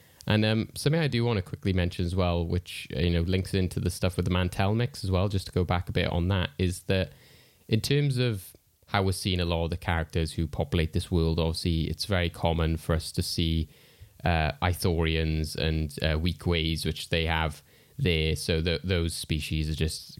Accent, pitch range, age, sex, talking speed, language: British, 85-120 Hz, 20-39, male, 215 wpm, English